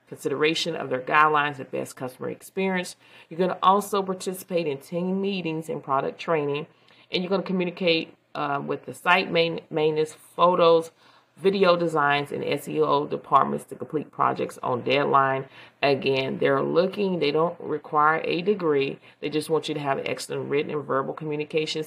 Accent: American